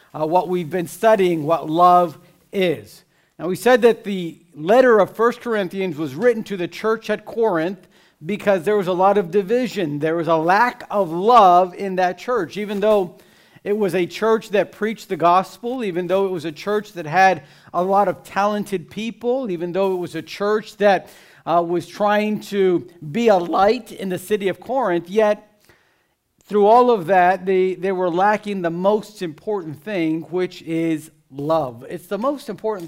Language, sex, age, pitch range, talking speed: English, male, 50-69, 170-210 Hz, 185 wpm